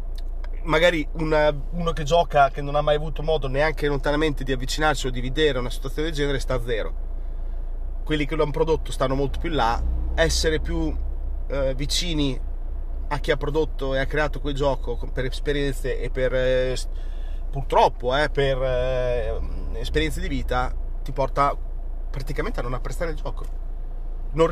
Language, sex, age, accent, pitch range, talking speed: Italian, male, 30-49, native, 110-150 Hz, 170 wpm